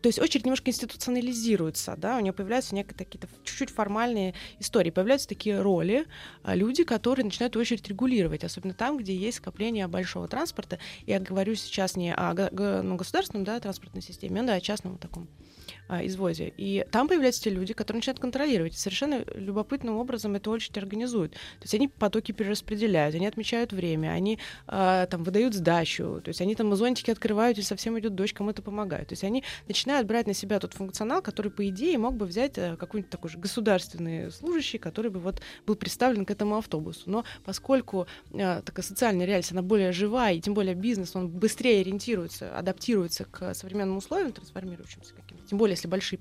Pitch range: 185-230 Hz